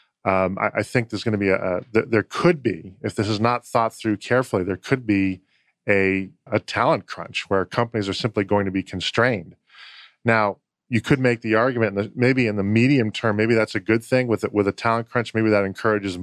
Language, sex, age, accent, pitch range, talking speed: English, male, 10-29, American, 95-115 Hz, 230 wpm